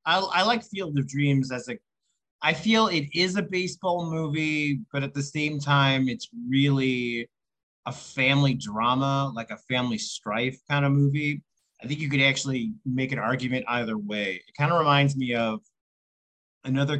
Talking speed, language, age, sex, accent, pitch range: 175 wpm, English, 30-49, male, American, 120-150 Hz